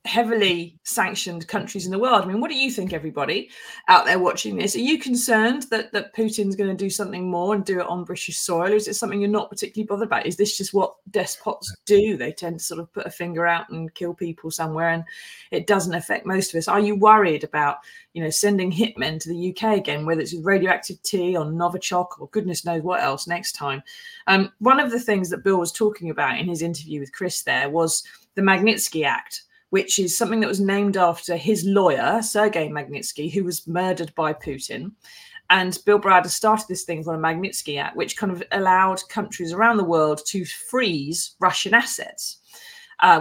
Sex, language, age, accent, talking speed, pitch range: female, English, 20-39, British, 215 wpm, 170-225 Hz